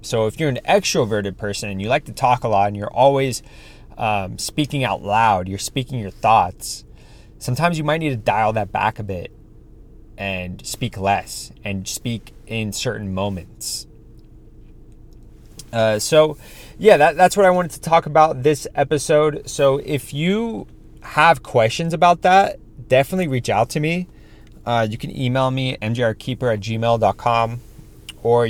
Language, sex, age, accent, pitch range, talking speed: English, male, 30-49, American, 105-135 Hz, 160 wpm